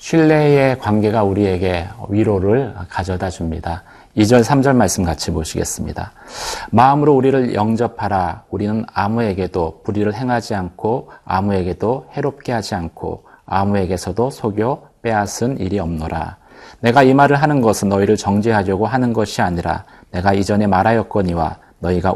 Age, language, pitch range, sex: 40-59, Korean, 95-125 Hz, male